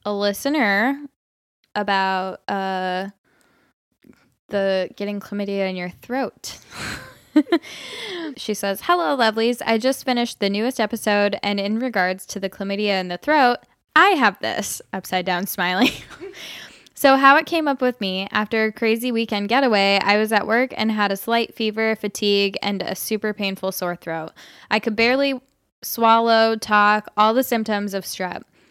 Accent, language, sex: American, English, female